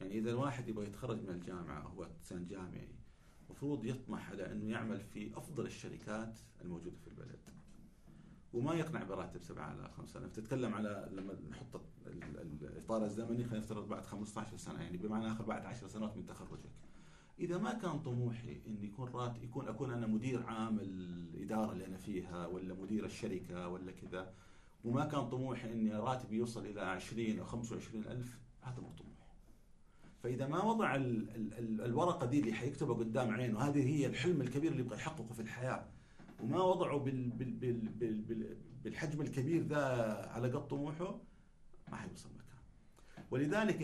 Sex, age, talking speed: male, 40-59, 150 wpm